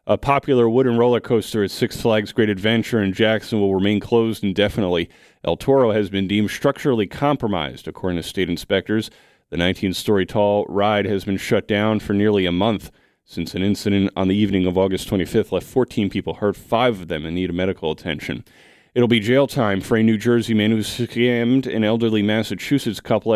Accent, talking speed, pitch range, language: American, 190 wpm, 95-115 Hz, English